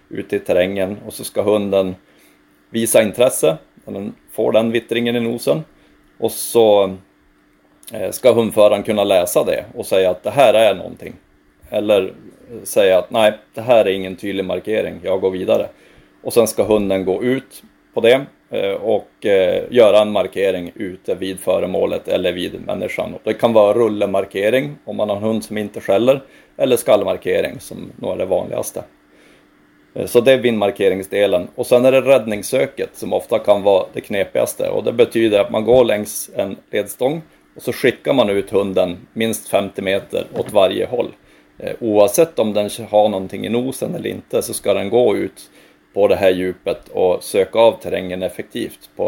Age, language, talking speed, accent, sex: 30-49, Swedish, 170 wpm, native, male